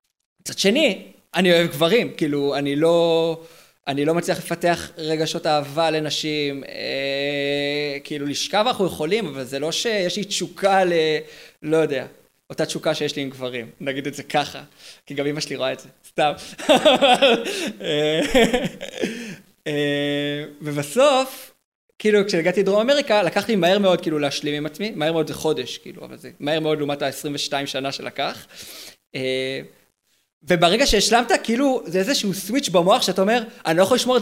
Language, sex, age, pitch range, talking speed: Hebrew, male, 20-39, 145-195 Hz, 155 wpm